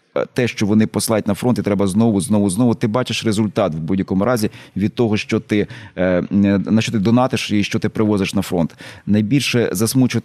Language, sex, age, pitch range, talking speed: Ukrainian, male, 30-49, 100-125 Hz, 195 wpm